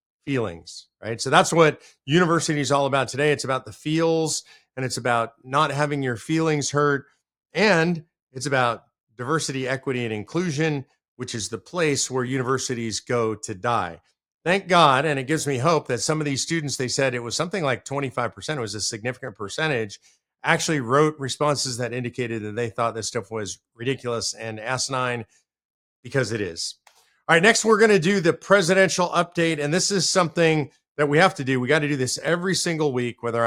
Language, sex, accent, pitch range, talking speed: English, male, American, 125-160 Hz, 190 wpm